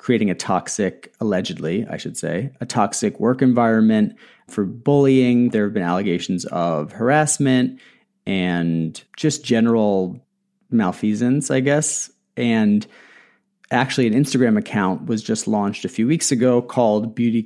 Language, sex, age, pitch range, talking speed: English, male, 30-49, 105-135 Hz, 135 wpm